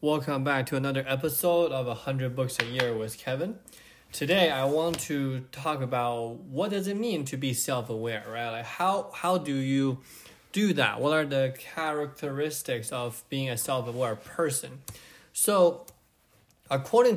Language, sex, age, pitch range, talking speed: English, male, 20-39, 120-155 Hz, 155 wpm